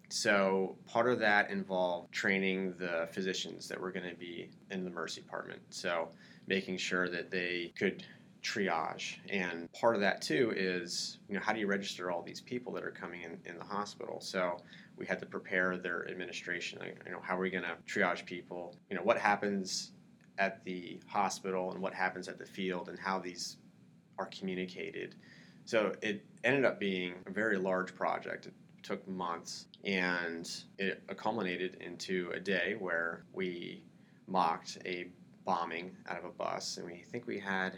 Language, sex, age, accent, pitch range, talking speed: English, male, 20-39, American, 90-95 Hz, 180 wpm